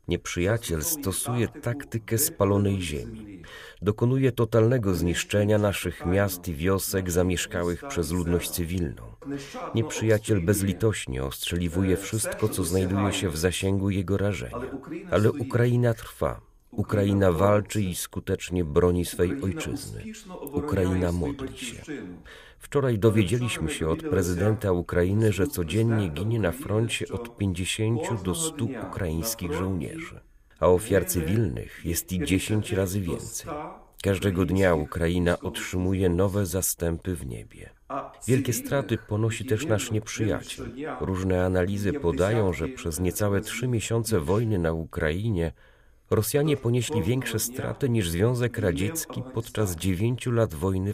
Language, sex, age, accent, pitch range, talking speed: Polish, male, 40-59, native, 90-115 Hz, 120 wpm